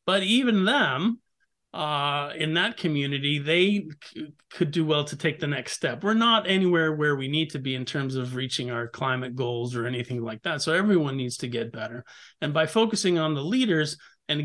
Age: 40-59